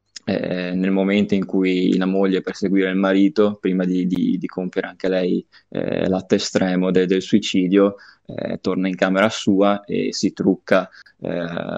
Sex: male